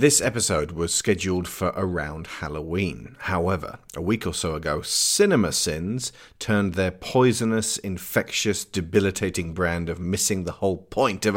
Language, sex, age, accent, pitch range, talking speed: English, male, 40-59, British, 90-110 Hz, 140 wpm